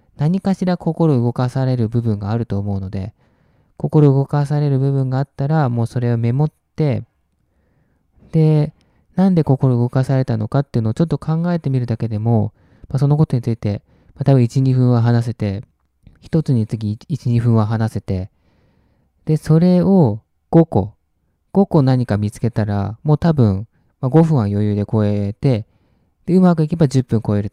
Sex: male